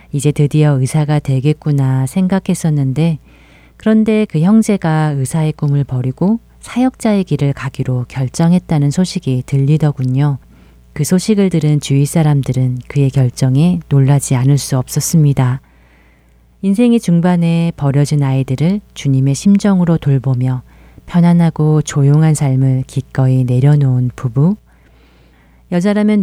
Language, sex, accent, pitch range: Korean, female, native, 130-160 Hz